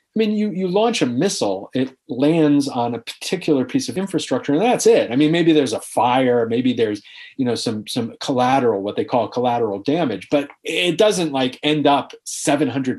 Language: English